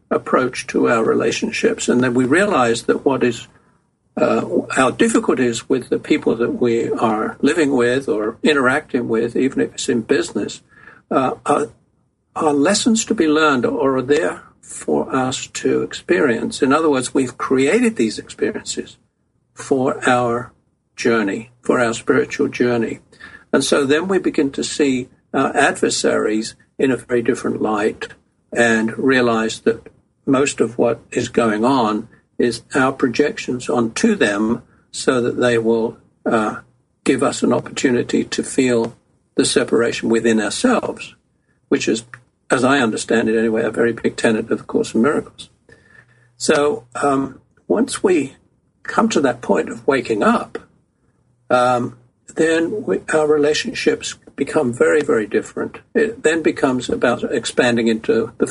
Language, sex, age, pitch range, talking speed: English, male, 60-79, 115-145 Hz, 150 wpm